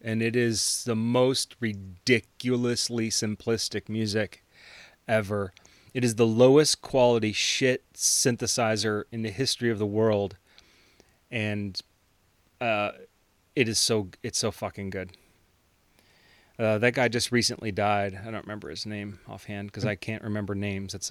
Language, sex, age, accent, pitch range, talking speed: English, male, 30-49, American, 100-115 Hz, 135 wpm